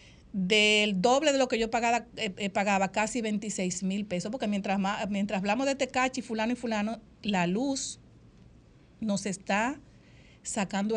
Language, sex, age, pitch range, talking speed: Spanish, female, 50-69, 195-240 Hz, 165 wpm